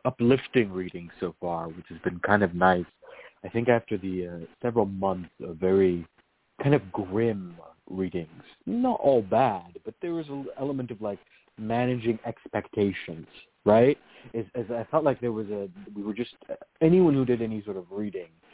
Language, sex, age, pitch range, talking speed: English, male, 30-49, 90-120 Hz, 175 wpm